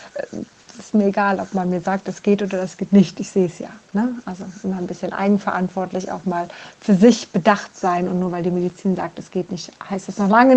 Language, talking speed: German, 245 wpm